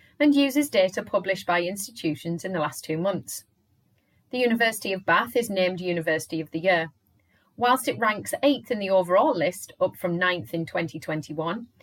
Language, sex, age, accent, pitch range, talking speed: English, female, 30-49, British, 165-230 Hz, 170 wpm